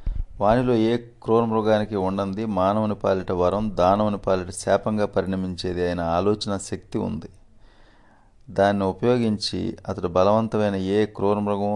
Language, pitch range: Telugu, 95-110 Hz